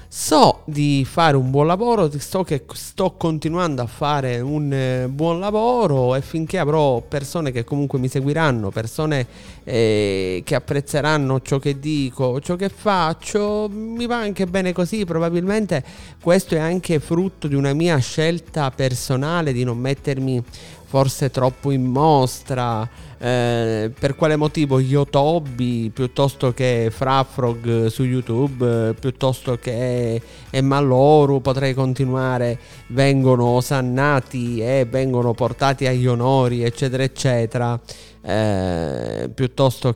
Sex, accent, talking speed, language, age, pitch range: male, native, 130 wpm, Italian, 30-49, 120-145 Hz